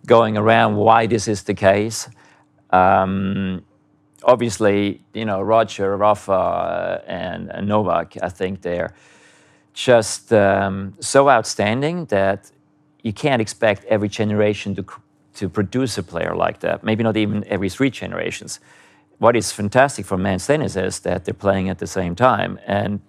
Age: 40-59